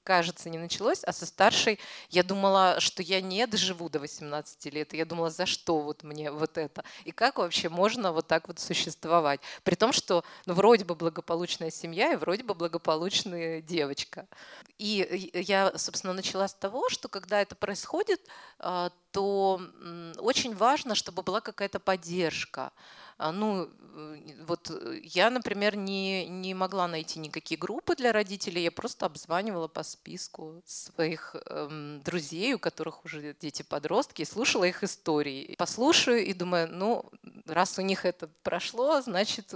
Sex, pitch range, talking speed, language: female, 165-205 Hz, 155 wpm, Russian